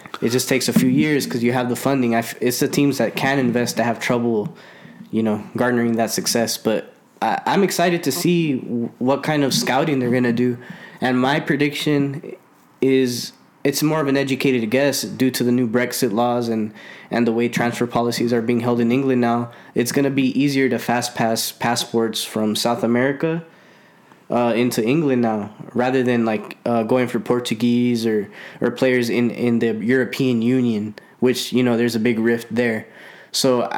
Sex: male